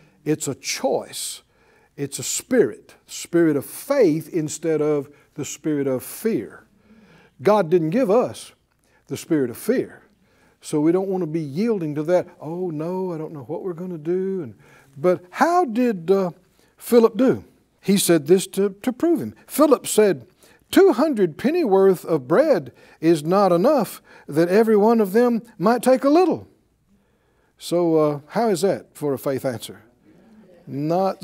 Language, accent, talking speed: English, American, 160 wpm